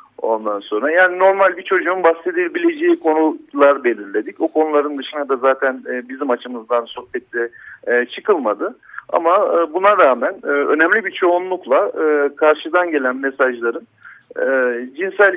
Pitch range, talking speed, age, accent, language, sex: 125-165 Hz, 110 wpm, 50-69, native, Turkish, male